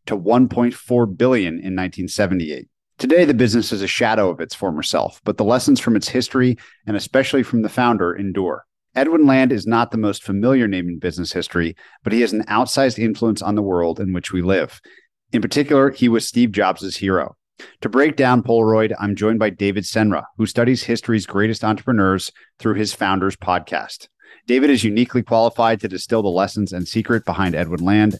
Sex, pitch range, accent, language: male, 90-115 Hz, American, English